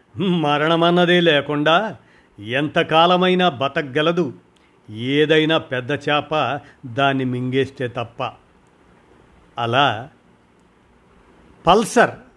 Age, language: 50-69, Telugu